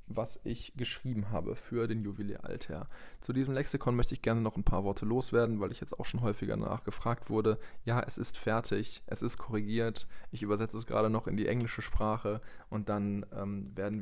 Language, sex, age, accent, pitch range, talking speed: German, male, 20-39, German, 100-120 Hz, 195 wpm